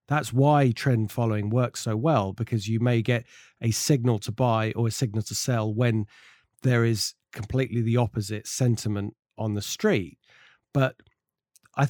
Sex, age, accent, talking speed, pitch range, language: male, 40-59, British, 160 wpm, 110-135 Hz, English